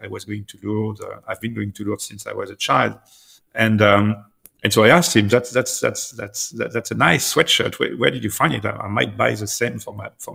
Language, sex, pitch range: English, male, 100-115 Hz